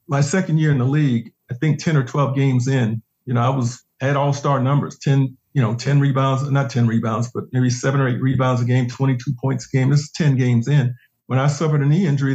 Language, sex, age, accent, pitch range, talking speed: English, male, 50-69, American, 125-145 Hz, 250 wpm